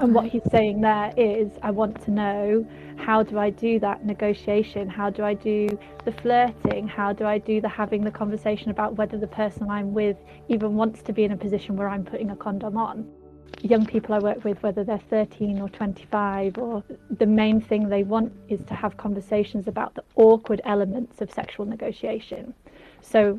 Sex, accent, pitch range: female, British, 205-220 Hz